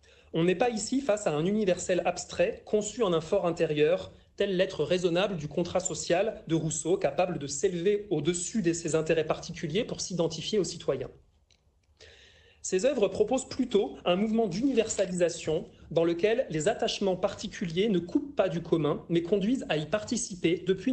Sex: male